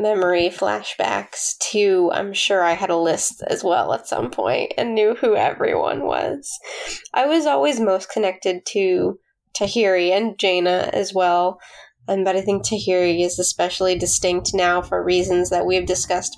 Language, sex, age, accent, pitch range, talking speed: English, female, 10-29, American, 180-210 Hz, 160 wpm